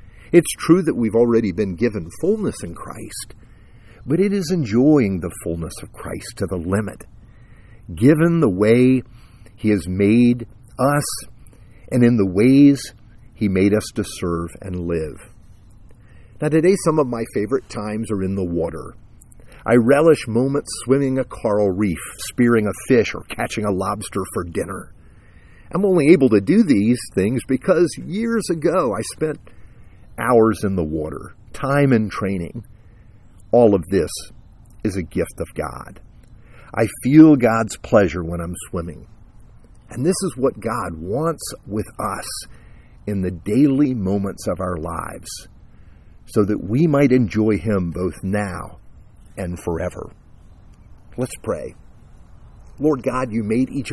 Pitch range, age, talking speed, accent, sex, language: 95-130 Hz, 50-69, 145 wpm, American, male, English